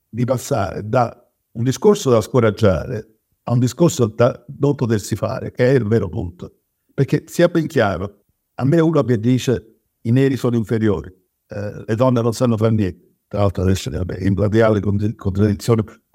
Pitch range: 105-135 Hz